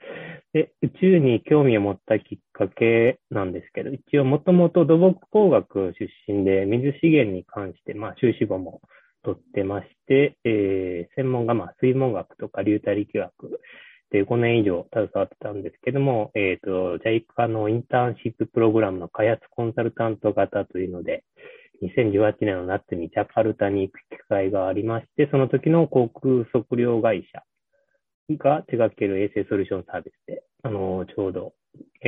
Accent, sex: native, male